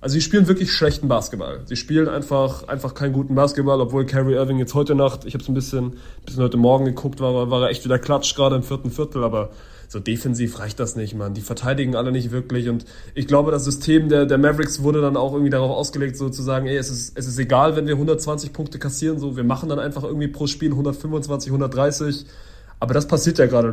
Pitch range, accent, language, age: 125-145 Hz, German, German, 30-49